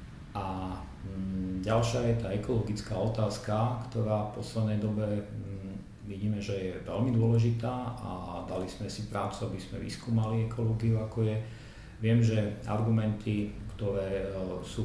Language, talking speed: Slovak, 125 wpm